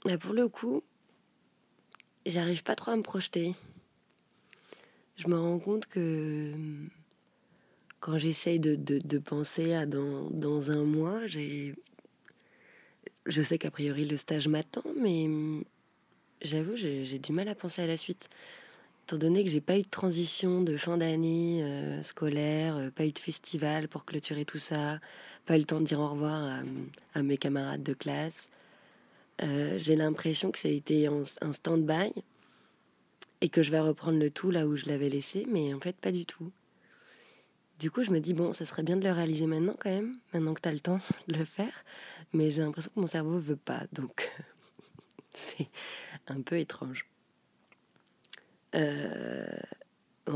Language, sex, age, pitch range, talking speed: French, female, 20-39, 150-175 Hz, 175 wpm